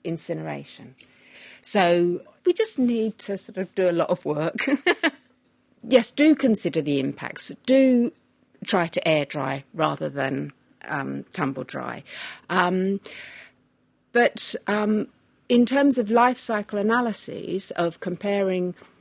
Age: 50-69